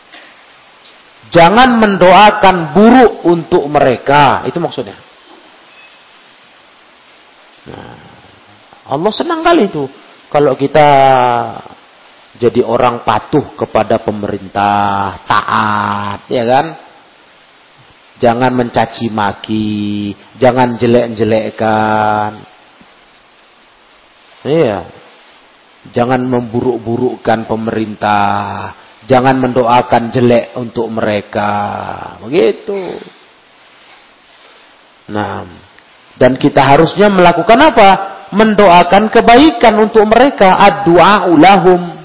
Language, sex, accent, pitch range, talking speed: Indonesian, male, native, 110-175 Hz, 70 wpm